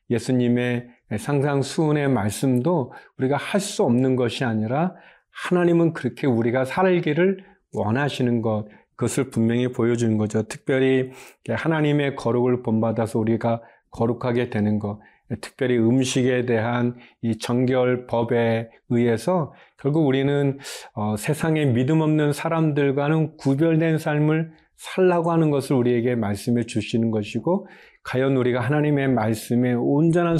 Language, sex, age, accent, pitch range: Korean, male, 40-59, native, 115-145 Hz